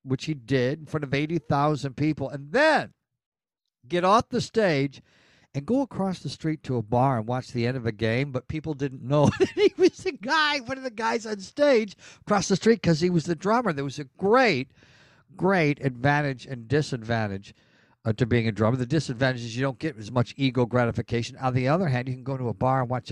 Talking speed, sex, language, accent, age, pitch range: 225 wpm, male, English, American, 60-79, 130-180 Hz